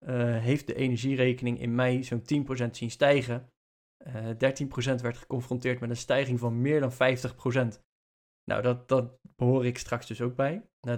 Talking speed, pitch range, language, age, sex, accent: 165 wpm, 125-145 Hz, Dutch, 20-39, male, Dutch